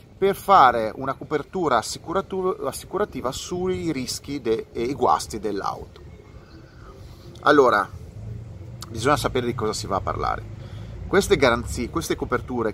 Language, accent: Italian, native